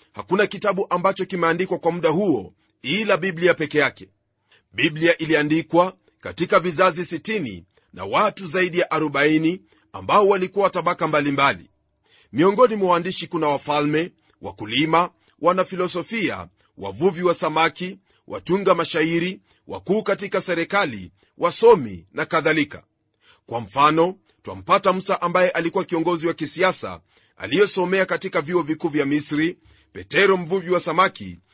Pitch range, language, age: 160-190 Hz, Swahili, 40-59